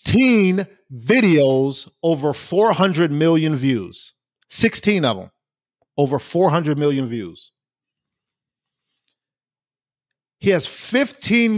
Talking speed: 80 wpm